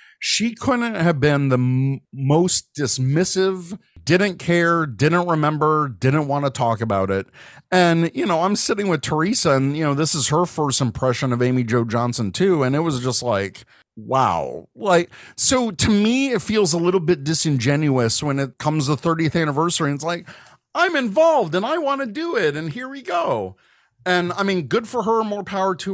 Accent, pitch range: American, 140-180 Hz